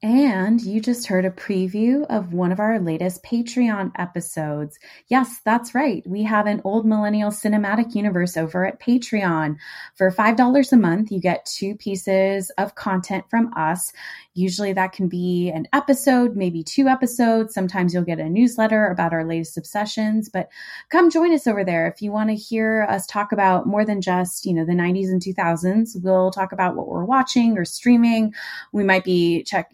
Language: English